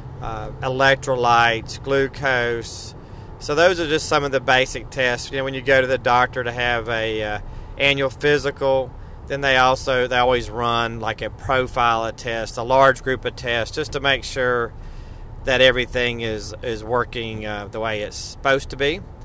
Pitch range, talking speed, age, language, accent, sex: 110-130 Hz, 180 wpm, 40-59, English, American, male